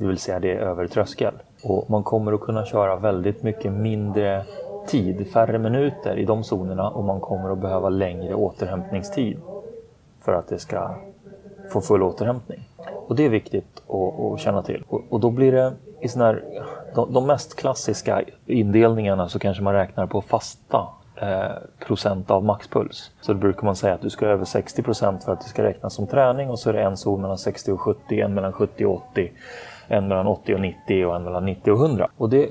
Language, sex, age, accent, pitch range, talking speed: Swedish, male, 30-49, native, 95-115 Hz, 205 wpm